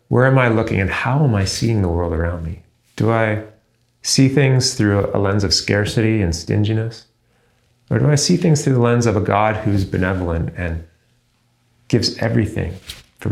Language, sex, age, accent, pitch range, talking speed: English, male, 30-49, American, 95-120 Hz, 185 wpm